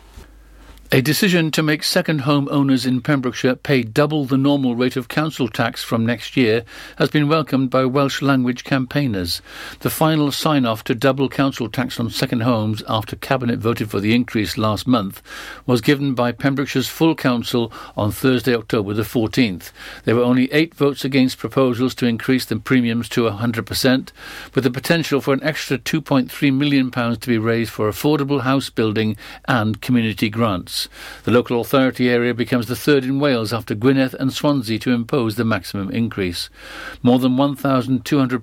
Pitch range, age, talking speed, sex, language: 115-135 Hz, 60-79, 165 wpm, male, English